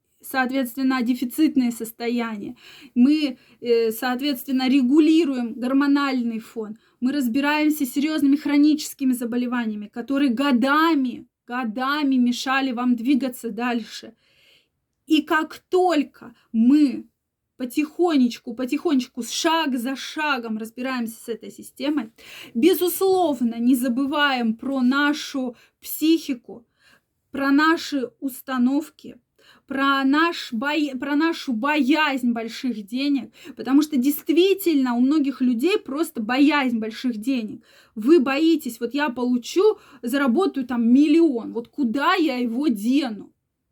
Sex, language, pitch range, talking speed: female, Russian, 245-300 Hz, 100 wpm